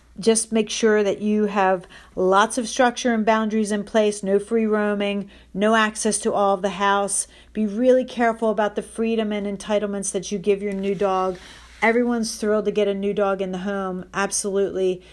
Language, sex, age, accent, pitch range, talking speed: English, female, 40-59, American, 185-210 Hz, 190 wpm